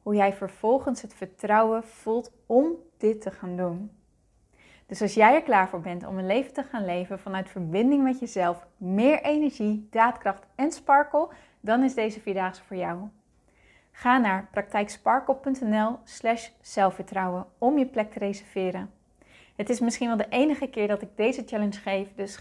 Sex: female